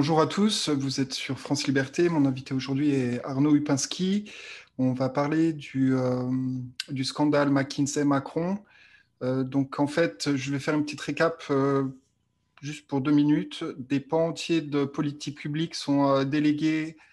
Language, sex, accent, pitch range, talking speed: French, male, French, 135-155 Hz, 160 wpm